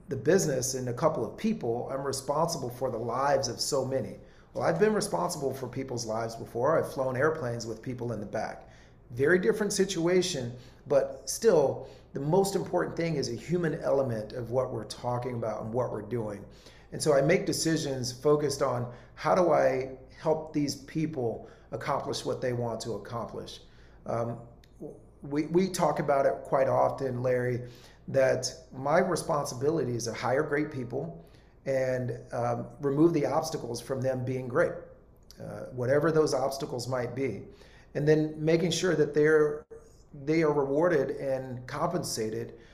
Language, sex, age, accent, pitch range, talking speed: English, male, 40-59, American, 120-155 Hz, 165 wpm